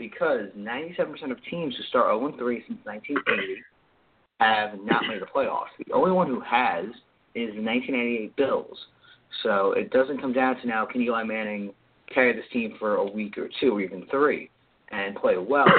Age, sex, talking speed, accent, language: 30-49, male, 175 wpm, American, English